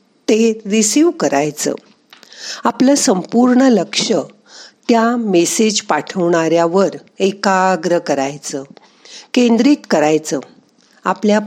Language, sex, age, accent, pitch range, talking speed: Marathi, female, 50-69, native, 175-245 Hz, 75 wpm